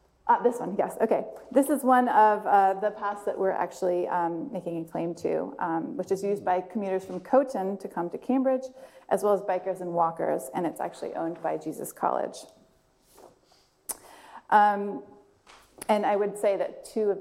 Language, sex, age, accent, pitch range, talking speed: English, female, 30-49, American, 180-225 Hz, 185 wpm